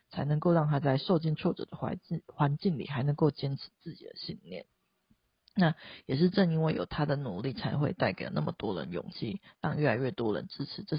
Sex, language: female, Chinese